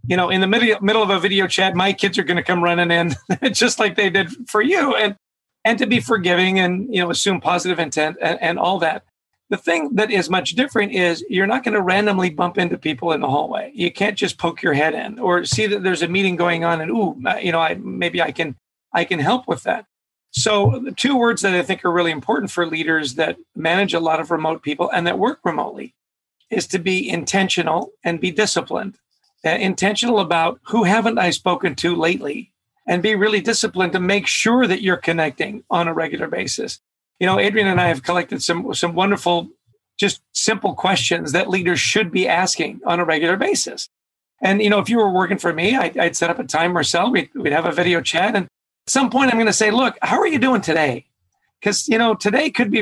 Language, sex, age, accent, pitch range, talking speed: English, male, 40-59, American, 175-220 Hz, 230 wpm